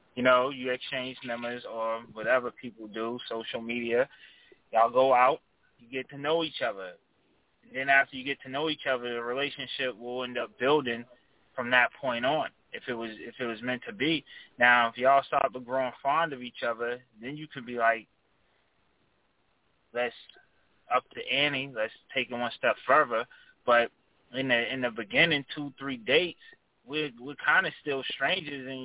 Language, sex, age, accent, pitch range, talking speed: English, male, 20-39, American, 120-150 Hz, 185 wpm